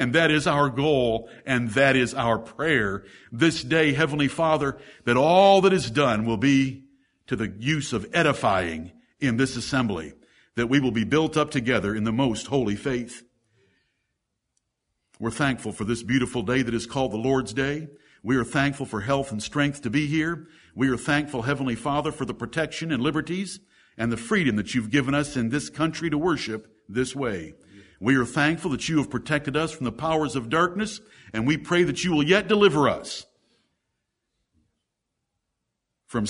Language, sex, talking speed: English, male, 180 wpm